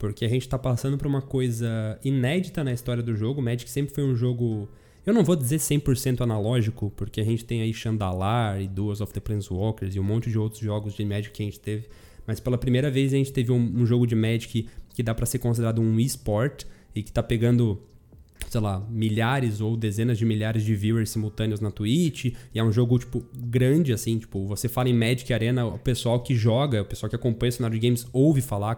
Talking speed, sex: 230 wpm, male